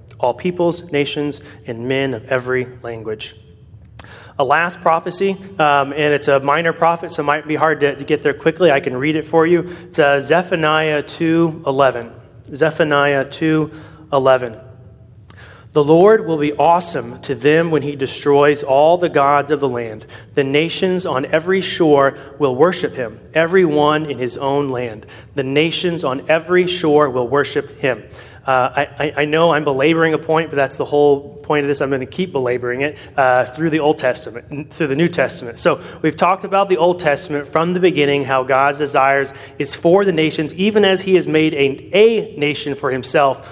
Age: 30-49